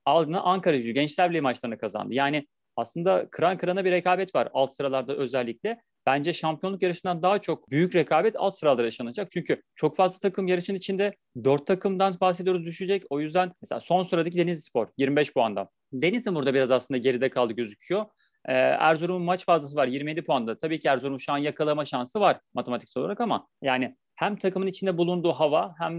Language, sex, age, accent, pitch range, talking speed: Turkish, male, 40-59, native, 135-180 Hz, 175 wpm